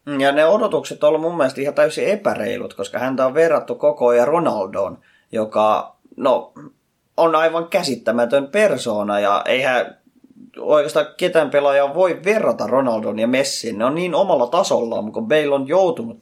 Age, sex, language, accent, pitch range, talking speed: 20-39, male, Finnish, native, 120-175 Hz, 150 wpm